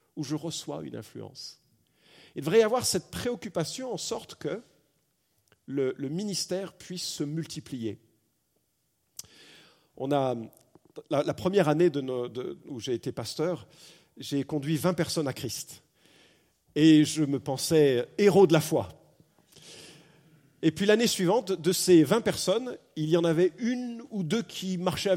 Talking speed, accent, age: 155 wpm, French, 50-69